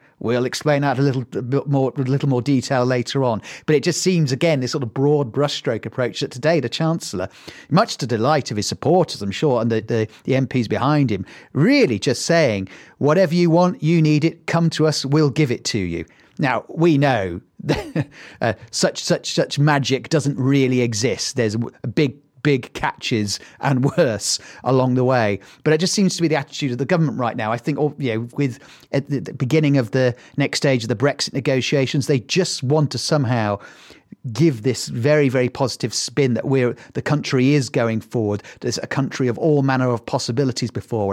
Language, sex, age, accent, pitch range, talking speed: English, male, 40-59, British, 120-145 Hz, 205 wpm